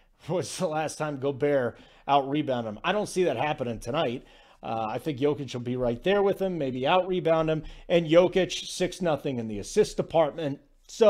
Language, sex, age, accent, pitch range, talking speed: English, male, 40-59, American, 140-190 Hz, 195 wpm